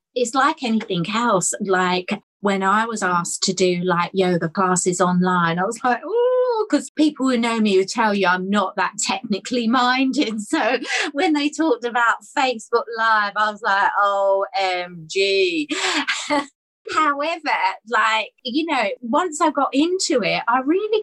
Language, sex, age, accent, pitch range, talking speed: English, female, 30-49, British, 200-290 Hz, 155 wpm